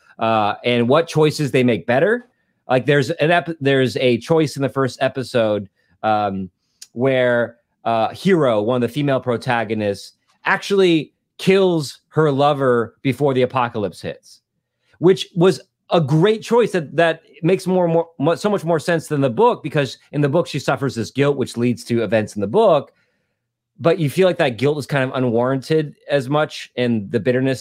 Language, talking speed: English, 180 wpm